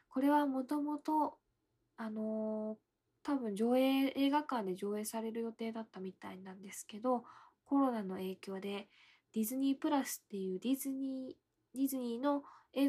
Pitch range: 195-265 Hz